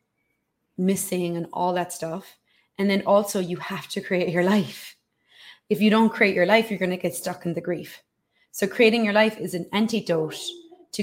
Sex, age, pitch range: female, 20-39, 170-210 Hz